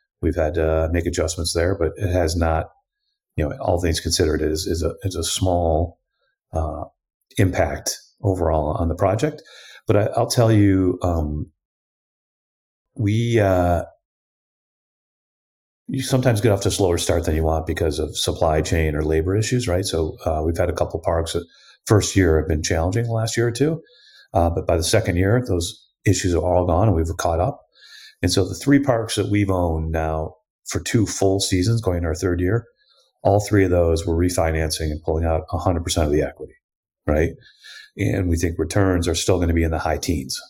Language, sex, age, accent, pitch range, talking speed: English, male, 40-59, American, 85-105 Hz, 200 wpm